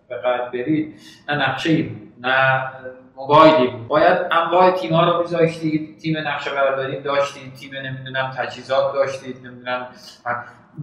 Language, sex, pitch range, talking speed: Persian, male, 130-185 Hz, 155 wpm